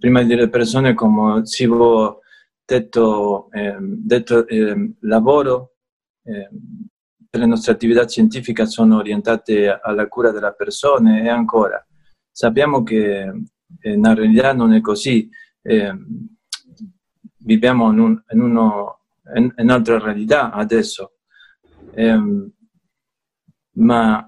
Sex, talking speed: male, 105 wpm